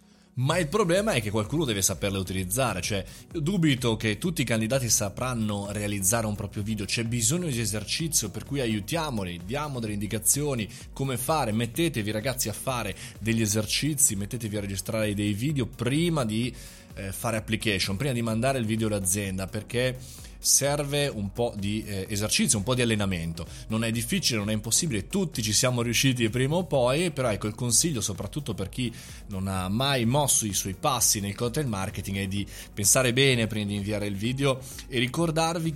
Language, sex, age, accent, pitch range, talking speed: Italian, male, 20-39, native, 105-145 Hz, 175 wpm